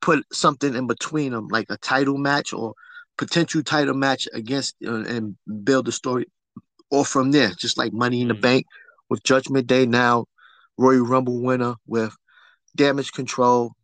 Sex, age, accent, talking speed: male, 20-39, American, 165 wpm